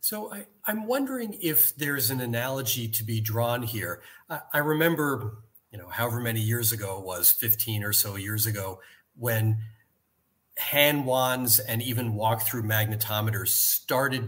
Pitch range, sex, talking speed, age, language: 110-140 Hz, male, 145 wpm, 40-59, English